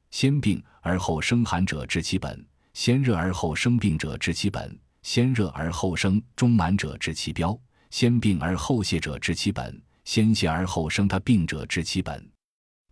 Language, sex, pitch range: Chinese, male, 80-115 Hz